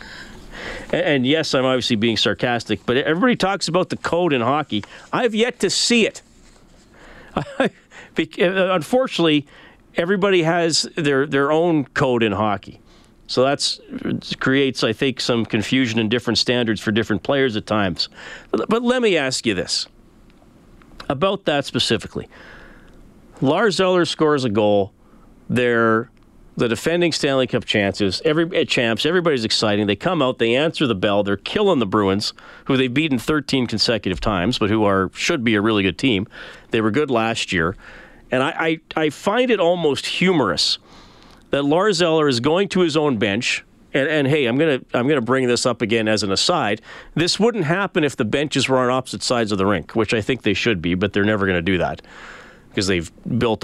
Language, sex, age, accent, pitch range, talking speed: English, male, 40-59, American, 110-160 Hz, 175 wpm